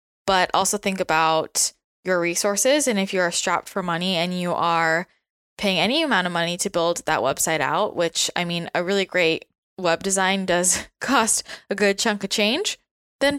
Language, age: English, 10-29